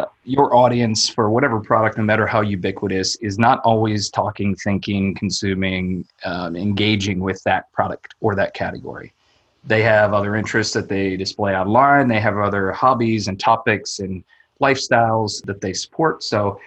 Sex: male